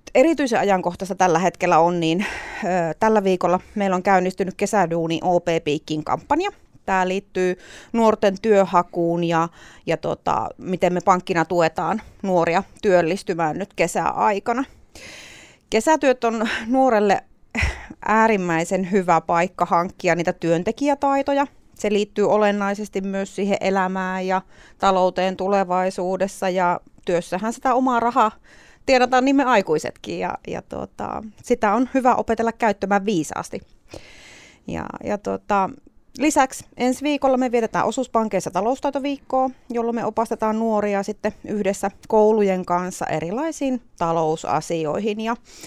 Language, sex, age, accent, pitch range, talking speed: Finnish, female, 30-49, native, 185-240 Hz, 105 wpm